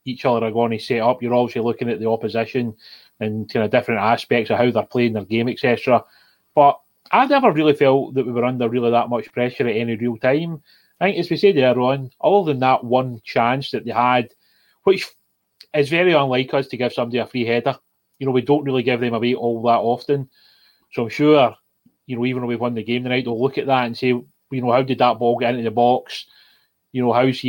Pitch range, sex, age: 120-140 Hz, male, 30-49